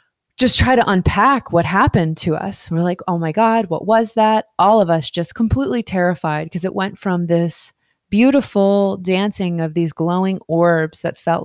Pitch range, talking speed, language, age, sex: 170-210 Hz, 185 wpm, English, 20-39, female